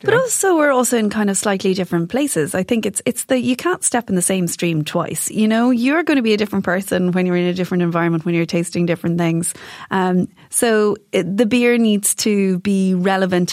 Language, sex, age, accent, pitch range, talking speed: English, female, 30-49, Irish, 185-245 Hz, 230 wpm